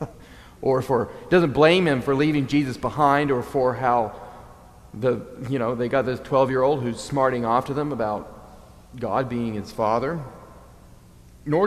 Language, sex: English, male